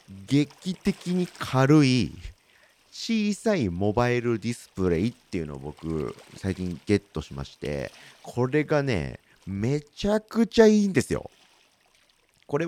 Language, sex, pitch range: Japanese, male, 90-155 Hz